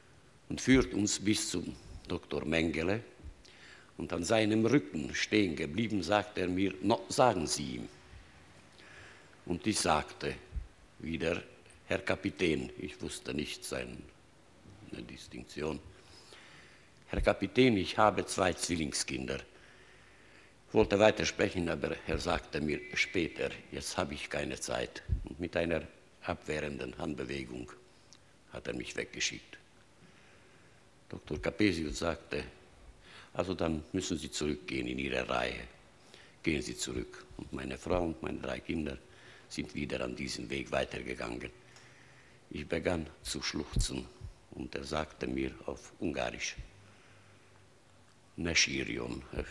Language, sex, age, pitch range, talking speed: German, male, 60-79, 65-100 Hz, 115 wpm